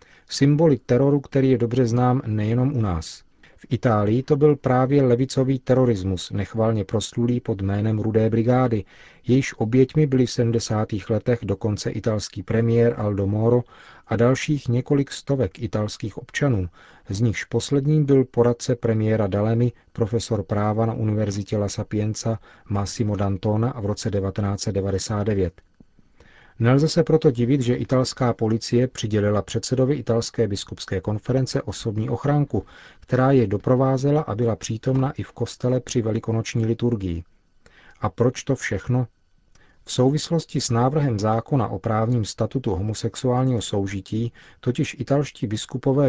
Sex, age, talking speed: male, 40-59, 130 wpm